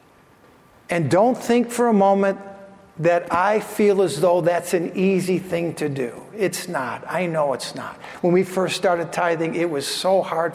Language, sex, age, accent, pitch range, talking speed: English, male, 50-69, American, 175-215 Hz, 180 wpm